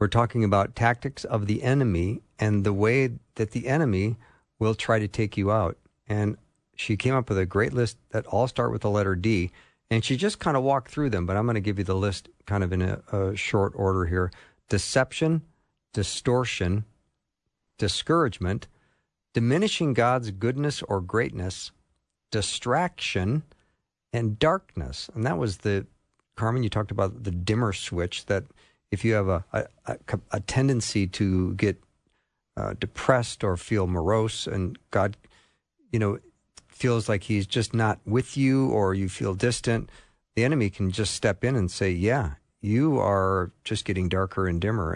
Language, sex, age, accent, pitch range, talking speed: English, male, 50-69, American, 95-120 Hz, 170 wpm